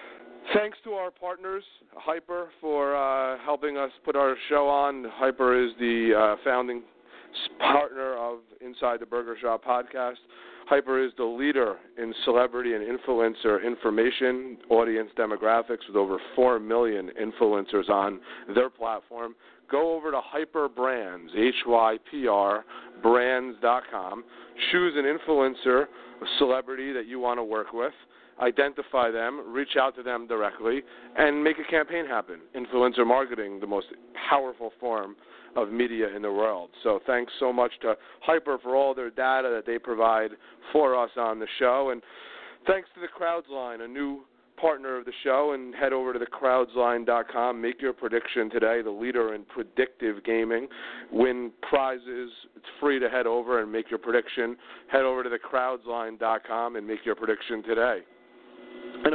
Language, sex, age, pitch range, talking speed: English, male, 40-59, 115-140 Hz, 150 wpm